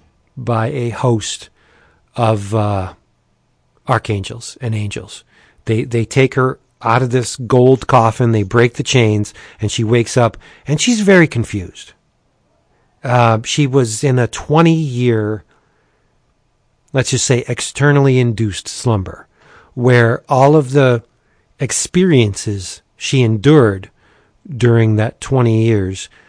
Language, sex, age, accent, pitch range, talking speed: English, male, 40-59, American, 110-130 Hz, 120 wpm